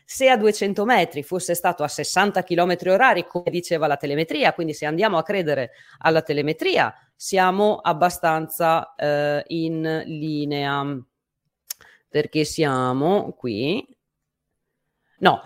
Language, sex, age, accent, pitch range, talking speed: Italian, female, 30-49, native, 155-210 Hz, 115 wpm